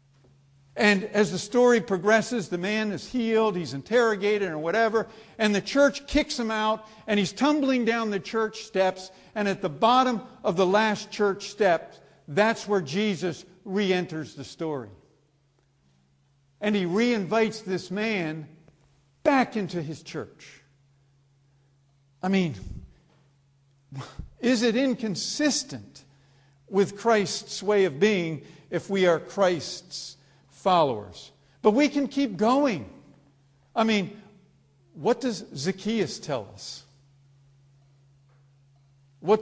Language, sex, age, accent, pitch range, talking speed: English, male, 50-69, American, 140-215 Hz, 120 wpm